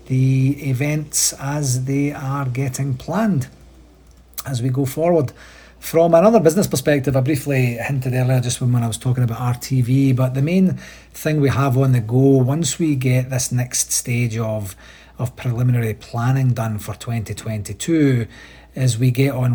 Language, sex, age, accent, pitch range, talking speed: English, male, 40-59, British, 110-135 Hz, 160 wpm